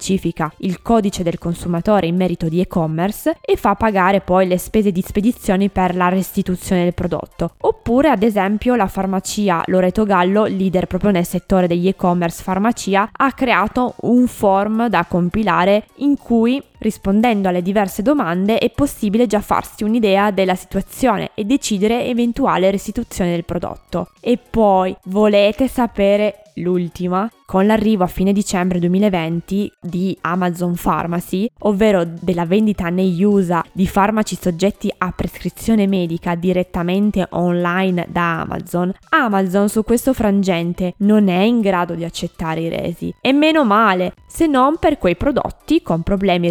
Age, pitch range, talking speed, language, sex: 20-39, 180-220 Hz, 145 wpm, Italian, female